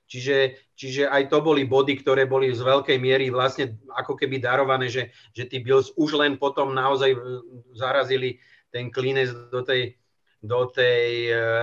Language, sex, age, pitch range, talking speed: Czech, male, 40-59, 120-165 Hz, 150 wpm